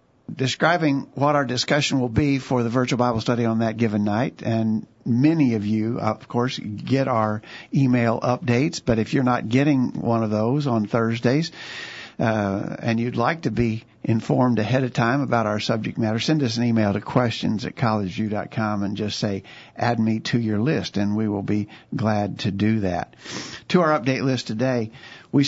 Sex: male